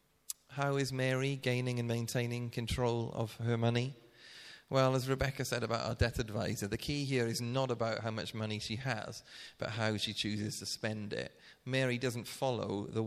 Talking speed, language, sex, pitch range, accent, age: 185 wpm, English, male, 110-130 Hz, British, 30-49